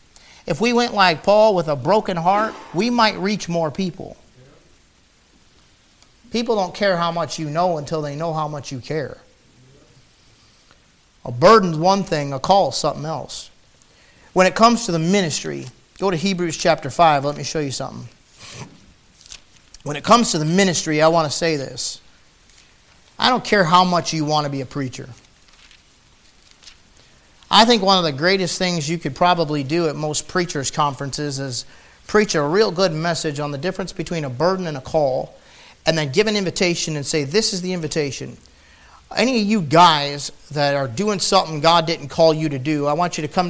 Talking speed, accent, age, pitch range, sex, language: 185 wpm, American, 40-59, 145-185 Hz, male, English